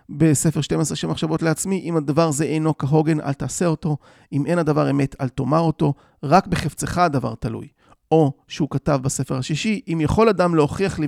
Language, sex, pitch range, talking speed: Hebrew, male, 135-170 Hz, 180 wpm